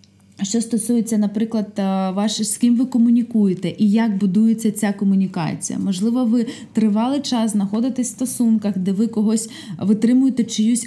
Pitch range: 195-230 Hz